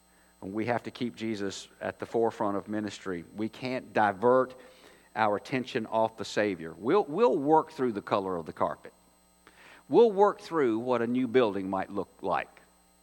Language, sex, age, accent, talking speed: English, male, 50-69, American, 170 wpm